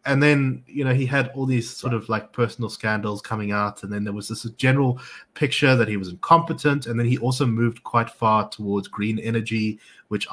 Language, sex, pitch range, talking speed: English, male, 105-130 Hz, 215 wpm